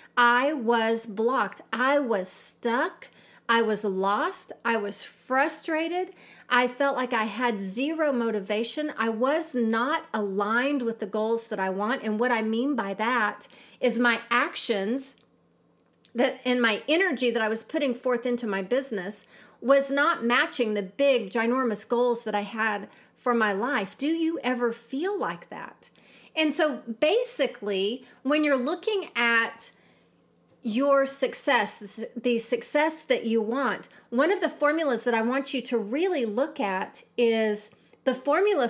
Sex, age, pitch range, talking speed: female, 40-59, 225-285 Hz, 150 wpm